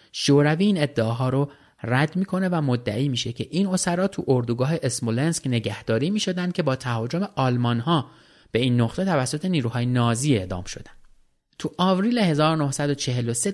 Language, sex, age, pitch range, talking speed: Persian, male, 30-49, 115-155 Hz, 145 wpm